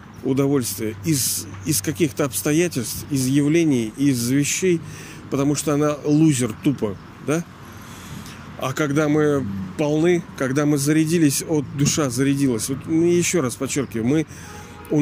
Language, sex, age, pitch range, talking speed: Russian, male, 40-59, 130-160 Hz, 125 wpm